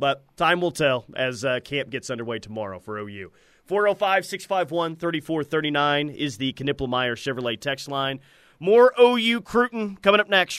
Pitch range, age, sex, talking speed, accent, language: 135-180 Hz, 30-49, male, 140 wpm, American, English